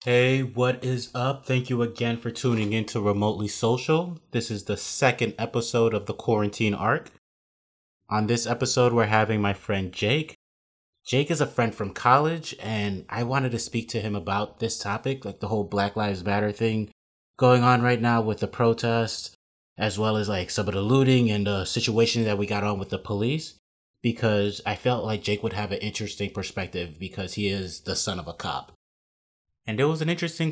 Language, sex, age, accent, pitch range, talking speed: English, male, 30-49, American, 95-115 Hz, 200 wpm